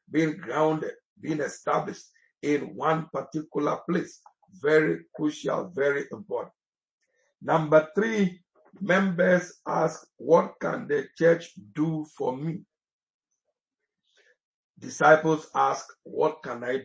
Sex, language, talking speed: male, English, 100 wpm